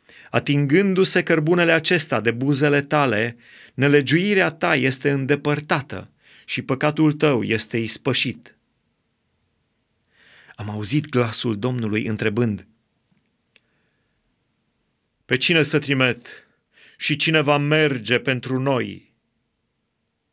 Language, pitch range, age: Romanian, 125-155 Hz, 30-49